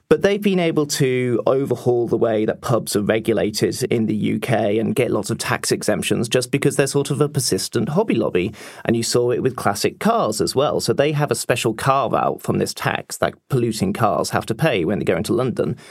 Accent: British